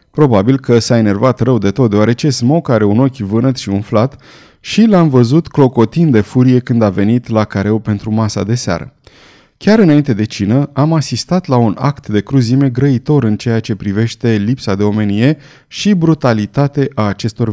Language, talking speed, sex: Romanian, 180 wpm, male